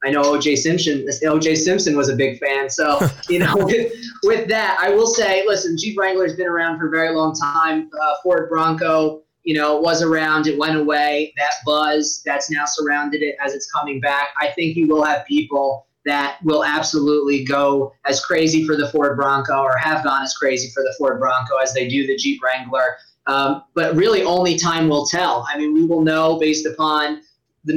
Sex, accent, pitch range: male, American, 145-170 Hz